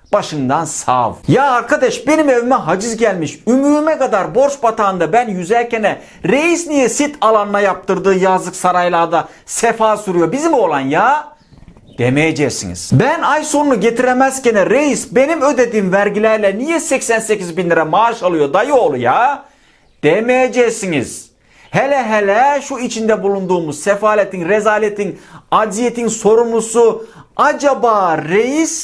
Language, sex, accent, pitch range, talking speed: Turkish, male, native, 180-265 Hz, 115 wpm